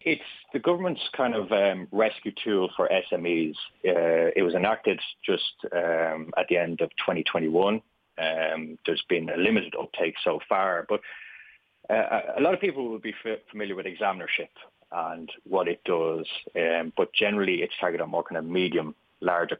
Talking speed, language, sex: 170 wpm, English, male